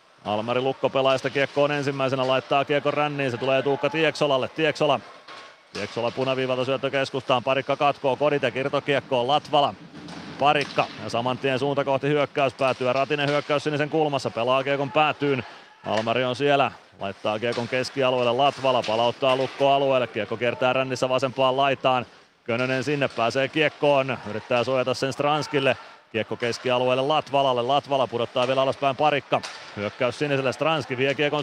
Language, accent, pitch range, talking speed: Finnish, native, 125-145 Hz, 135 wpm